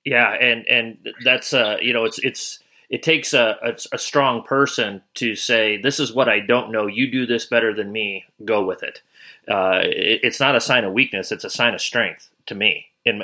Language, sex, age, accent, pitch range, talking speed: English, male, 30-49, American, 105-140 Hz, 220 wpm